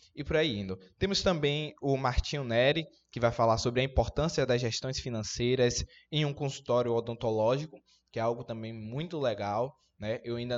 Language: Portuguese